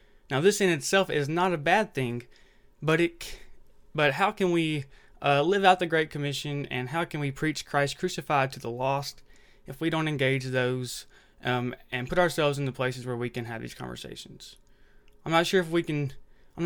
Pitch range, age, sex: 130-165 Hz, 20-39, male